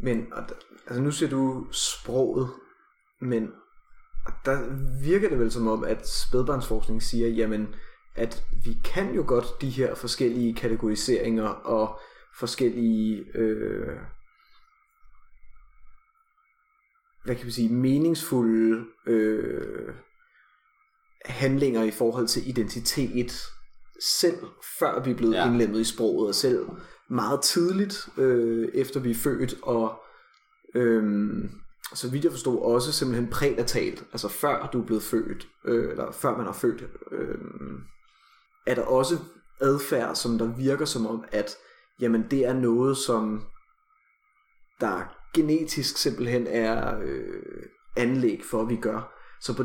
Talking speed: 130 wpm